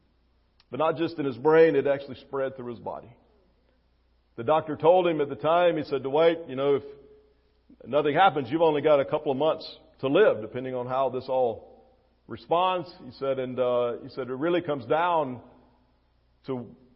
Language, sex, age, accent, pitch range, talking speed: English, male, 50-69, American, 115-160 Hz, 190 wpm